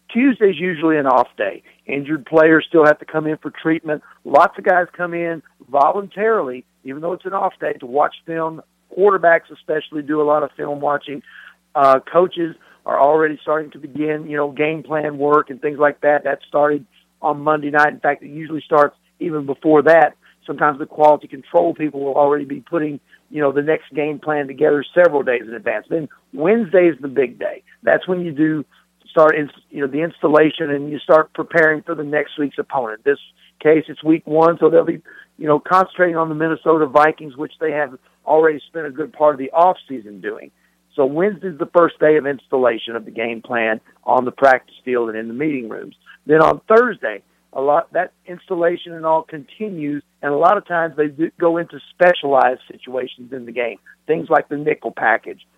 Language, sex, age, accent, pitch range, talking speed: English, male, 50-69, American, 145-165 Hz, 205 wpm